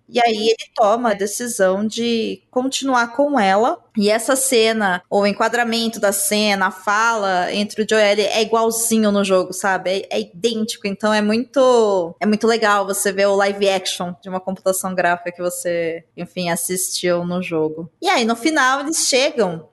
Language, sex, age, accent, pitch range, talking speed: Portuguese, female, 20-39, Brazilian, 190-240 Hz, 170 wpm